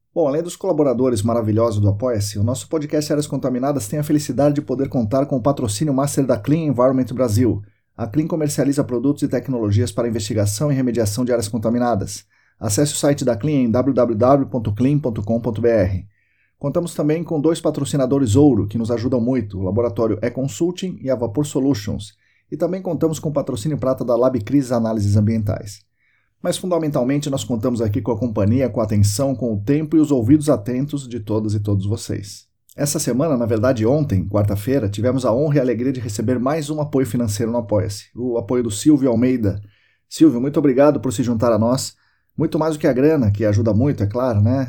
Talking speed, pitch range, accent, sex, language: 190 wpm, 110-140 Hz, Brazilian, male, Portuguese